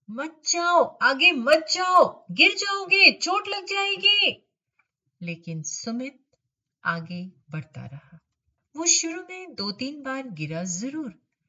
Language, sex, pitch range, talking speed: Hindi, female, 160-265 Hz, 120 wpm